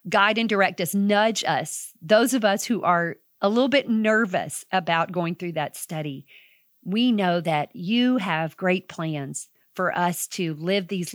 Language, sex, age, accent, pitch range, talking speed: English, female, 40-59, American, 165-200 Hz, 170 wpm